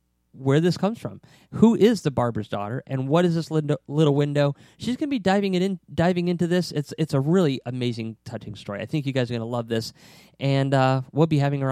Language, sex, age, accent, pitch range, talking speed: English, male, 30-49, American, 125-165 Hz, 235 wpm